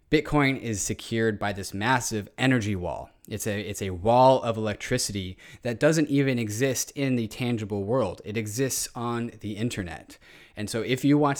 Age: 20-39